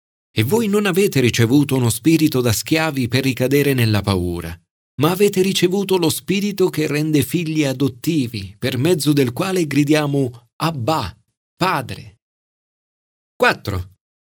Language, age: Italian, 40-59